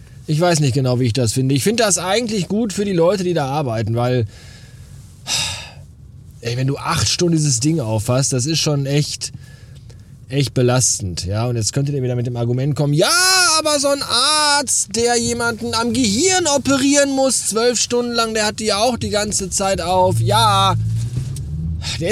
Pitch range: 115-160 Hz